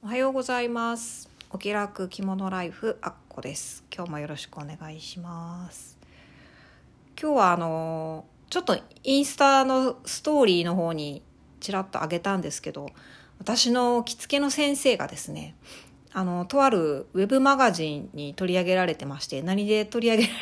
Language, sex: Japanese, female